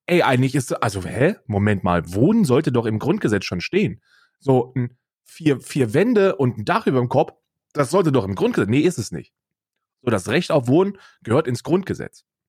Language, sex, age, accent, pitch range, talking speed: German, male, 30-49, German, 115-145 Hz, 195 wpm